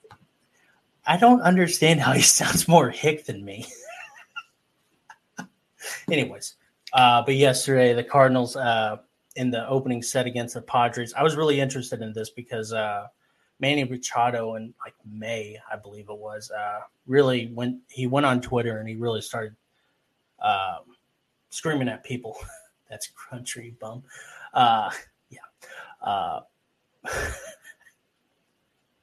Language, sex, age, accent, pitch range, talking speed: English, male, 20-39, American, 110-135 Hz, 125 wpm